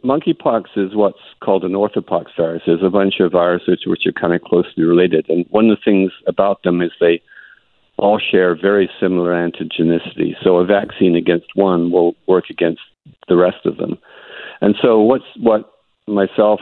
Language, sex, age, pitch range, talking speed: English, male, 50-69, 85-95 Hz, 175 wpm